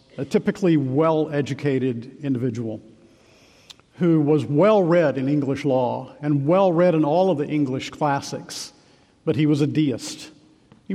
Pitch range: 135-160 Hz